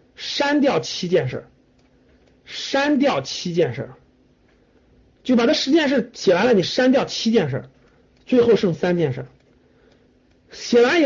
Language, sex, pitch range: Chinese, male, 170-260 Hz